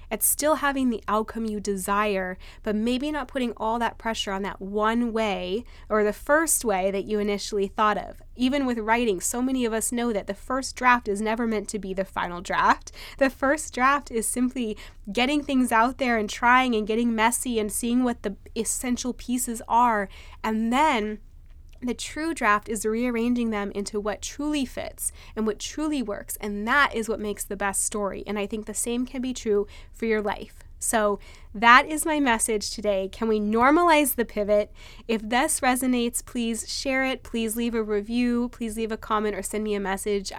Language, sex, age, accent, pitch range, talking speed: English, female, 20-39, American, 205-250 Hz, 200 wpm